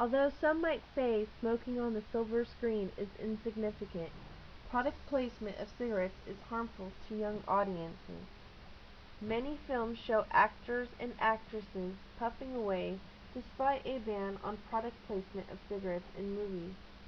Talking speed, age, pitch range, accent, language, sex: 135 wpm, 30-49, 195-235 Hz, American, English, female